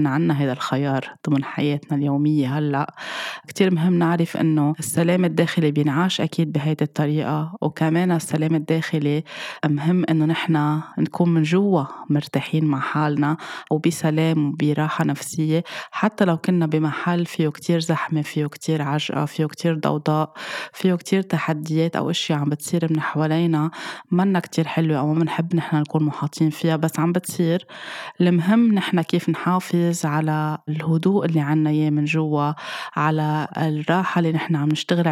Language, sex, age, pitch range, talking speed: Arabic, female, 20-39, 150-170 Hz, 140 wpm